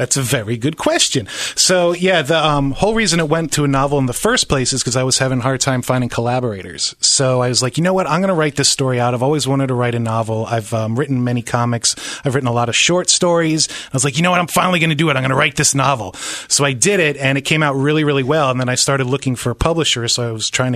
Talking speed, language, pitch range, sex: 300 wpm, English, 125-155 Hz, male